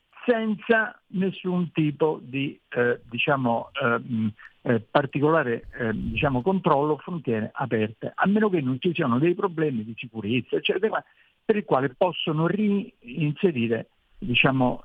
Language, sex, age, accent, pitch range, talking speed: Italian, male, 60-79, native, 120-175 Hz, 125 wpm